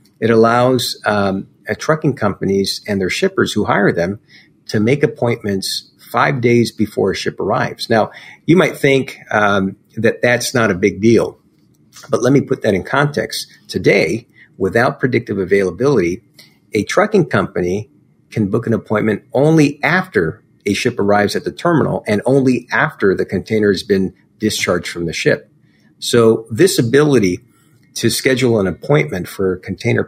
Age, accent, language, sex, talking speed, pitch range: 50-69, American, English, male, 155 wpm, 100-130 Hz